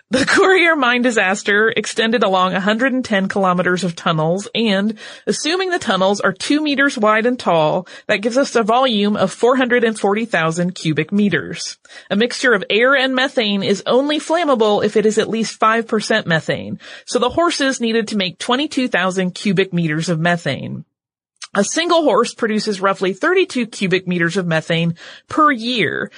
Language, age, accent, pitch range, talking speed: English, 30-49, American, 185-260 Hz, 155 wpm